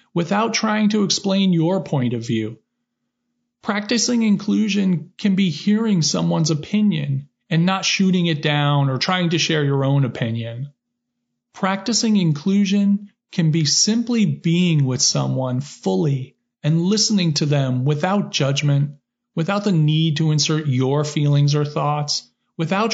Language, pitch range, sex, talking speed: English, 140-200 Hz, male, 135 wpm